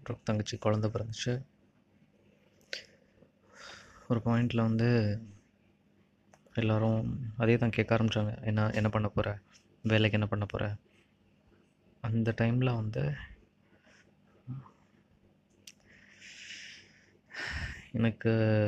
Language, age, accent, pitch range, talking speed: Tamil, 20-39, native, 105-120 Hz, 75 wpm